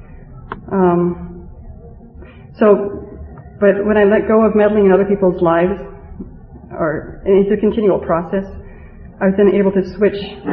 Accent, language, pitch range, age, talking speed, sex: American, English, 170-195 Hz, 40-59, 130 wpm, female